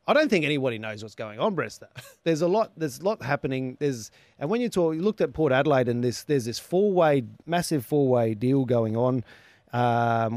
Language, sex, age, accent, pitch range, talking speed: English, male, 30-49, Australian, 120-175 Hz, 215 wpm